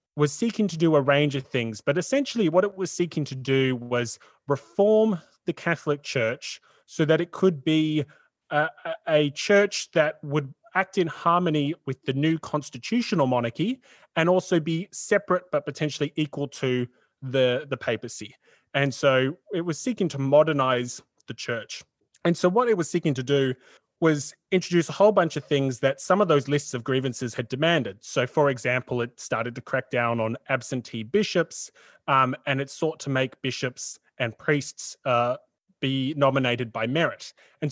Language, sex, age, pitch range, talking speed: English, male, 20-39, 125-165 Hz, 175 wpm